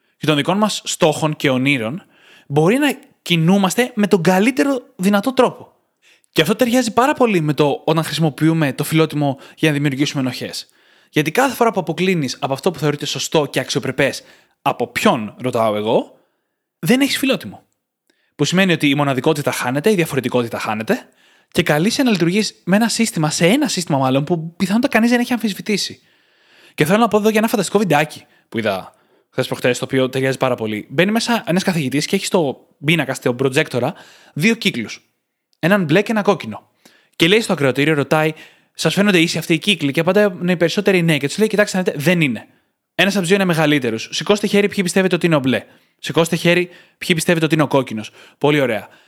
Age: 20-39